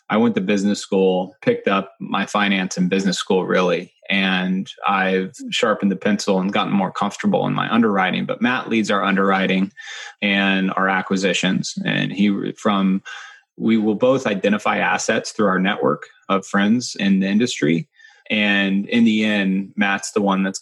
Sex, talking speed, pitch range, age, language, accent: male, 165 wpm, 95-115 Hz, 30-49, English, American